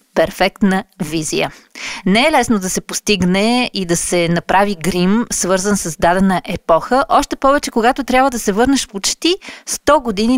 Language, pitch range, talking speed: Bulgarian, 180-245 Hz, 155 wpm